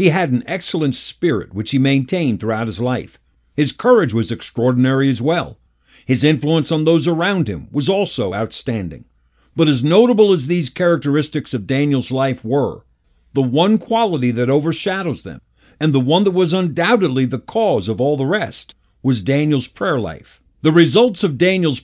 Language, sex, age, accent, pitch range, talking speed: English, male, 50-69, American, 130-170 Hz, 170 wpm